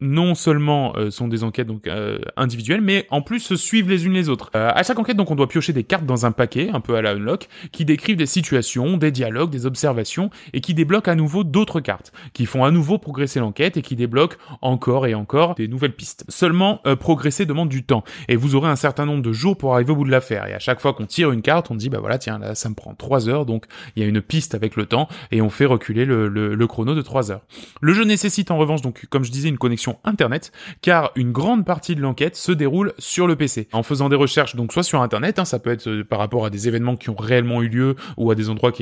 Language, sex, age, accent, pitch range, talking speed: French, male, 20-39, French, 120-170 Hz, 270 wpm